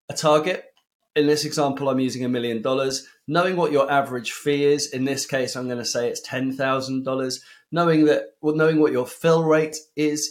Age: 20-39